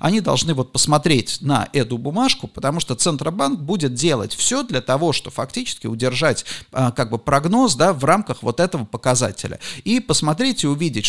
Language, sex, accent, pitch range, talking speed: Russian, male, native, 125-170 Hz, 175 wpm